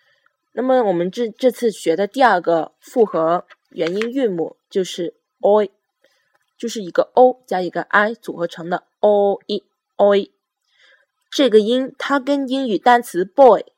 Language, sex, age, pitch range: Chinese, female, 20-39, 185-255 Hz